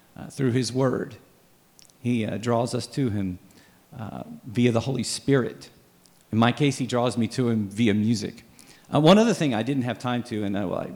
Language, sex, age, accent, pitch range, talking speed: English, male, 40-59, American, 105-140 Hz, 195 wpm